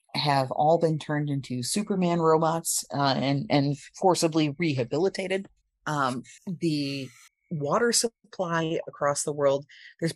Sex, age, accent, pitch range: female, 30-49, American, 140-195 Hz